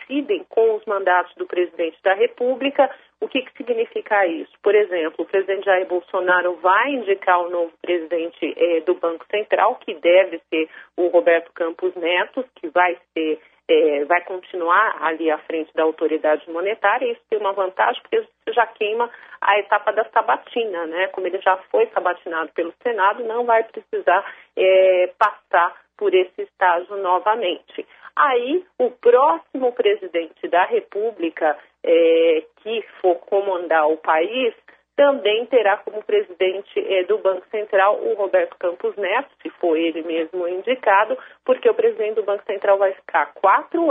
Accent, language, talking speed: Brazilian, Portuguese, 155 wpm